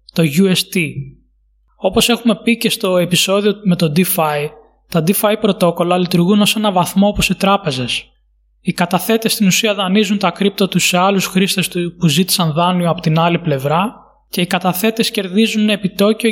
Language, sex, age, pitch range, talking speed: Greek, male, 20-39, 175-210 Hz, 160 wpm